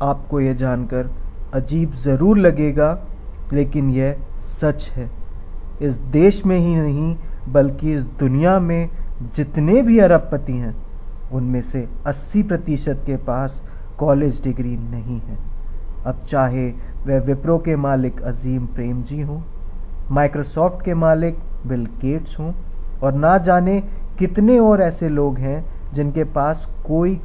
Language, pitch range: Hindi, 130-170 Hz